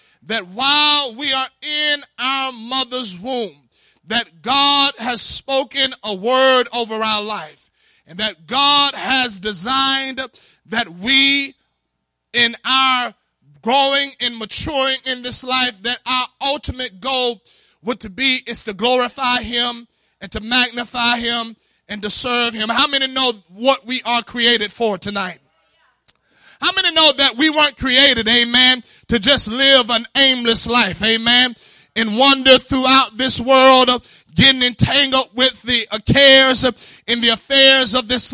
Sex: male